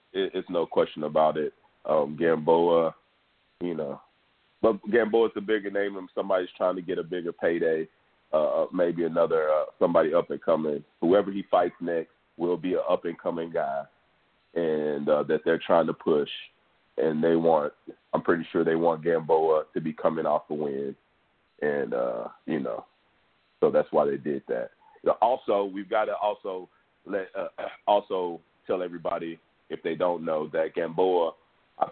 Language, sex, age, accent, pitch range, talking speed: English, male, 30-49, American, 80-95 Hz, 165 wpm